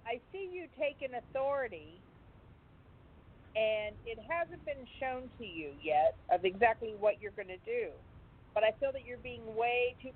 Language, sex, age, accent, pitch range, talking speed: English, female, 50-69, American, 210-270 Hz, 165 wpm